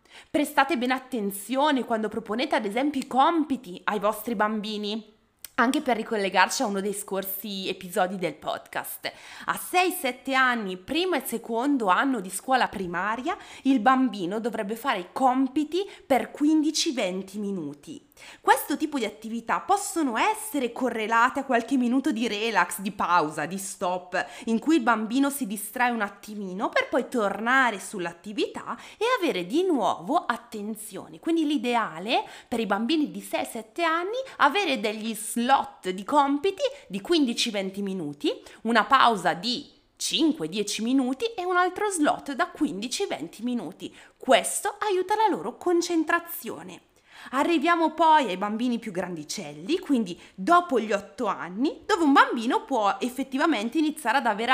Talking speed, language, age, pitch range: 140 wpm, Italian, 20-39, 210-290 Hz